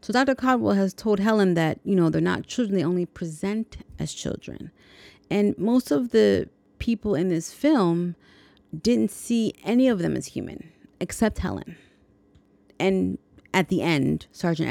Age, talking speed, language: 30-49, 160 wpm, English